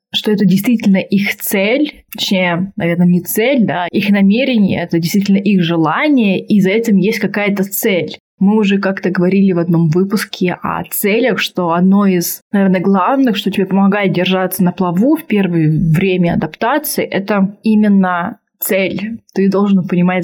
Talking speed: 155 wpm